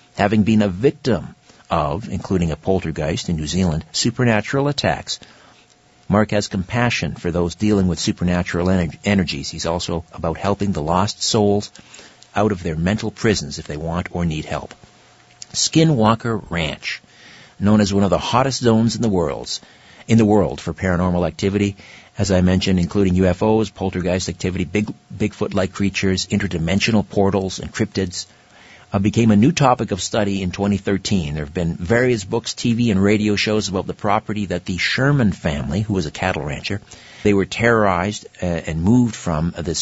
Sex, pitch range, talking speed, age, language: male, 90-110 Hz, 165 wpm, 50-69, English